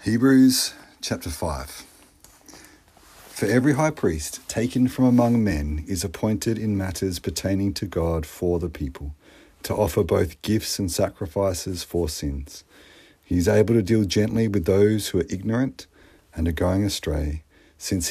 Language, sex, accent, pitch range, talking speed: English, male, Australian, 80-105 Hz, 150 wpm